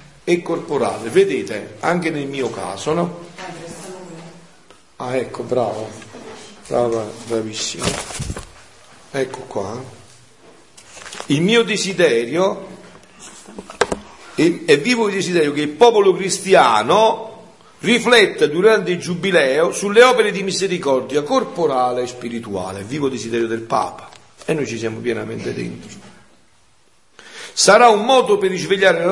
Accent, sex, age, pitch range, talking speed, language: native, male, 50-69, 135-205 Hz, 115 wpm, Italian